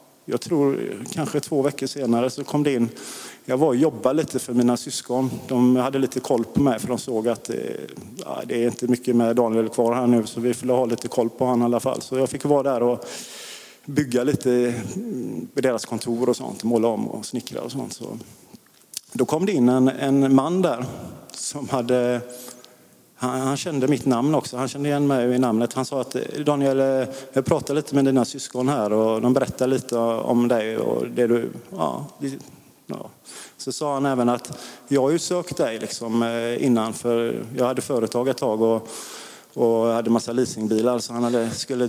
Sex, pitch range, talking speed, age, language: male, 120-135 Hz, 200 wpm, 30-49, Swedish